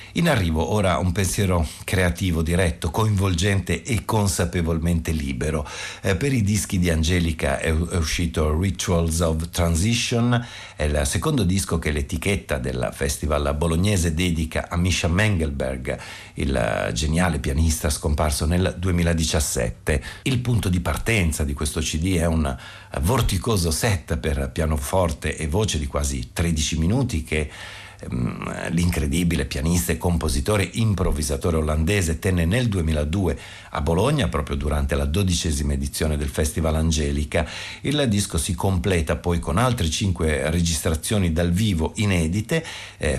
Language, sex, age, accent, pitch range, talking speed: Italian, male, 50-69, native, 80-95 Hz, 130 wpm